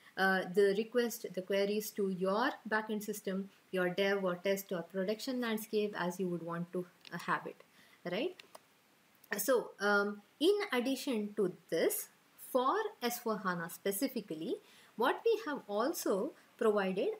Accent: Indian